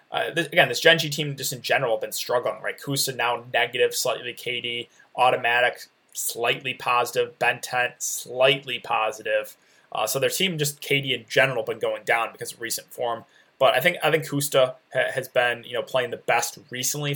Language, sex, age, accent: English, male, 20-39, American